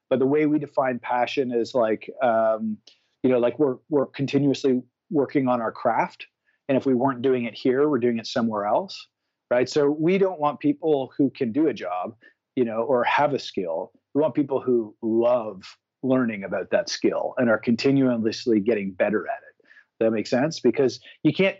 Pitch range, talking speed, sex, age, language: 120-150 Hz, 195 wpm, male, 40-59, English